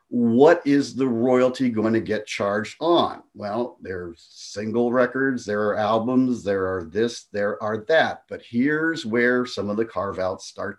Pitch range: 105-140 Hz